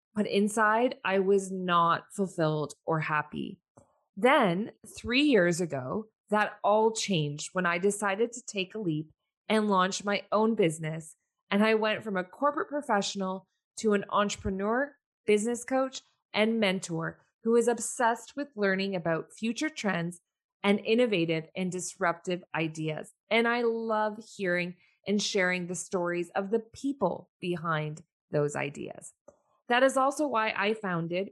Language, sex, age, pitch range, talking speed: English, female, 20-39, 175-225 Hz, 140 wpm